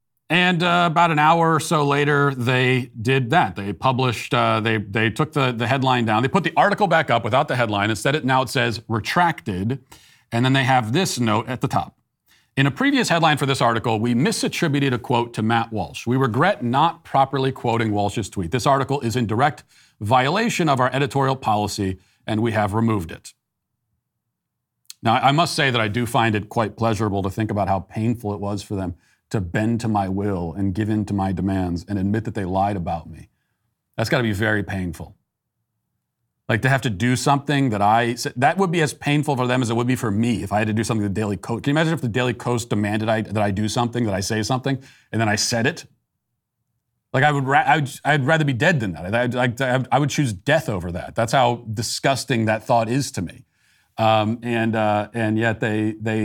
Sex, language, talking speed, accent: male, English, 230 wpm, American